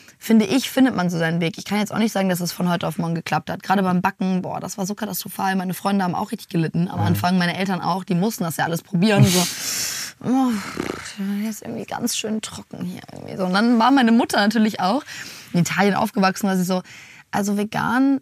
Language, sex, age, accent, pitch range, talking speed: German, female, 20-39, German, 180-225 Hz, 225 wpm